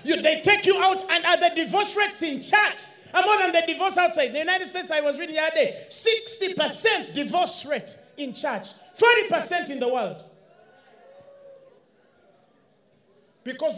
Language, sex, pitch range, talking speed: English, male, 265-370 Hz, 160 wpm